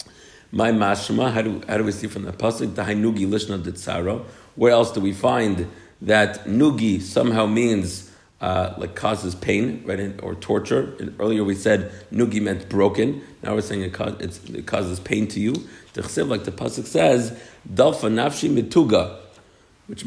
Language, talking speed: English, 165 wpm